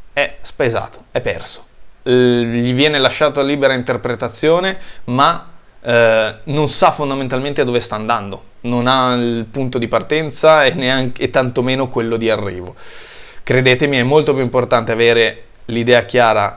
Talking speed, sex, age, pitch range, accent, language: 140 wpm, male, 20-39, 115-140 Hz, native, Italian